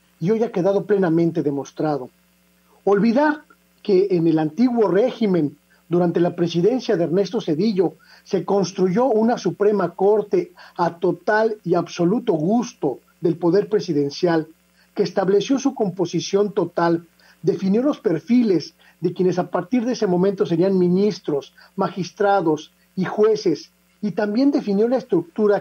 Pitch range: 165-215 Hz